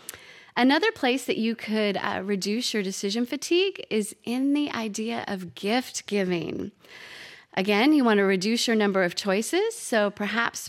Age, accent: 30-49, American